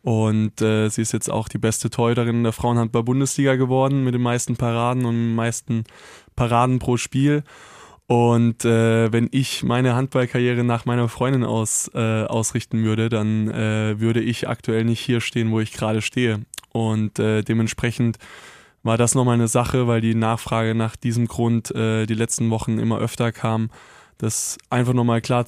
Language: German